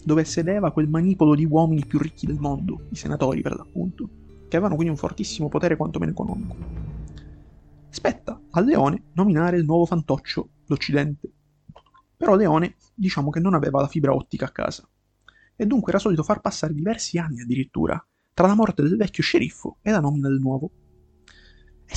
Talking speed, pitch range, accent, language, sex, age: 170 wpm, 135-180 Hz, native, Italian, male, 30-49